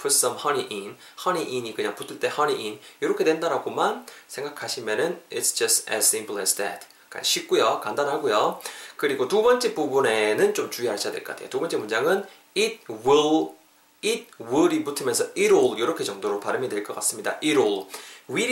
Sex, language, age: male, Korean, 20-39